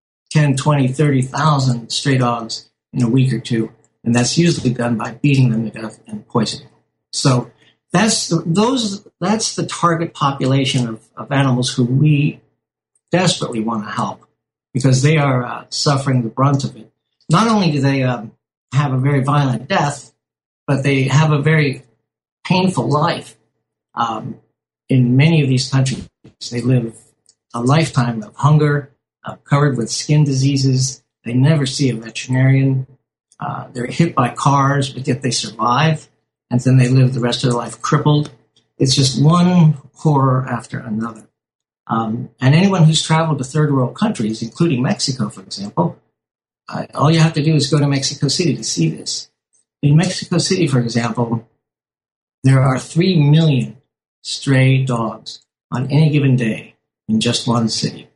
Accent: American